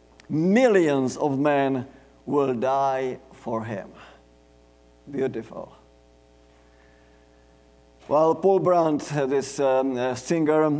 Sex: male